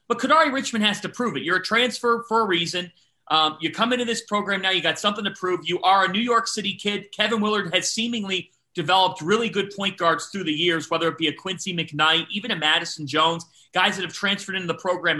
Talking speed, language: 240 wpm, English